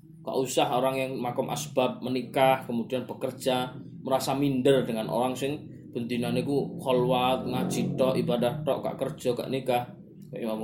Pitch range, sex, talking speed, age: 125-150 Hz, male, 145 wpm, 20-39